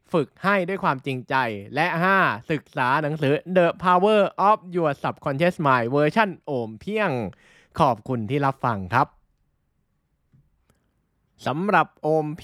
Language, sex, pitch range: Thai, male, 105-145 Hz